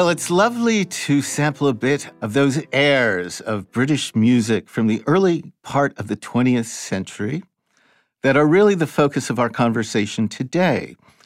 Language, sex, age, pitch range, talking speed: English, male, 50-69, 105-140 Hz, 160 wpm